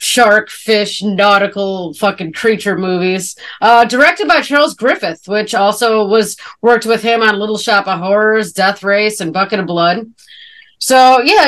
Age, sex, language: 30-49, female, English